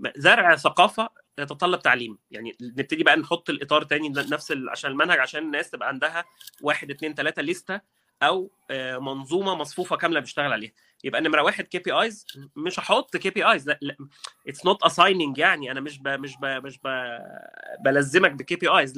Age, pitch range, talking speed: 30-49, 150-205 Hz, 170 wpm